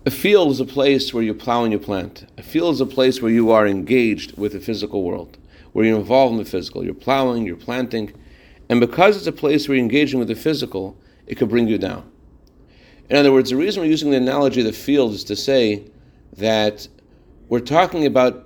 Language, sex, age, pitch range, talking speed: English, male, 40-59, 105-135 Hz, 220 wpm